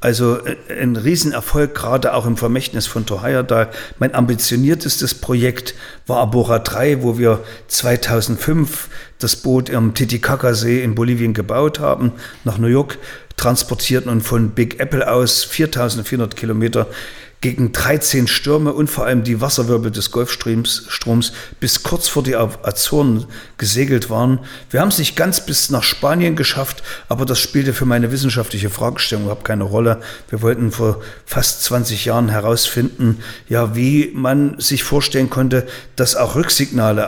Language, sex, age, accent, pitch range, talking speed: German, male, 50-69, German, 115-130 Hz, 145 wpm